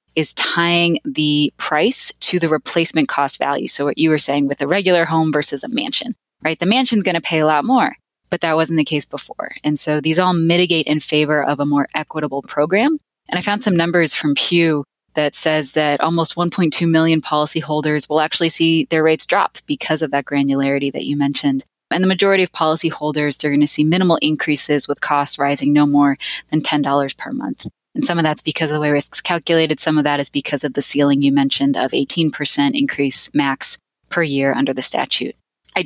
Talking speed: 210 wpm